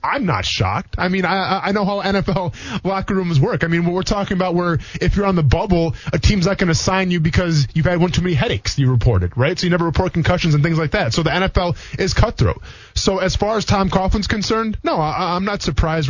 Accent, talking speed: American, 255 wpm